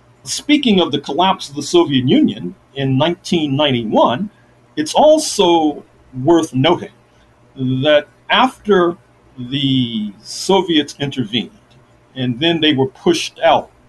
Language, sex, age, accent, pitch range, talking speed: English, male, 50-69, American, 125-185 Hz, 110 wpm